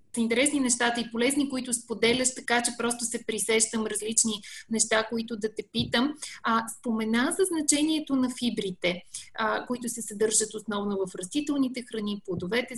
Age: 30-49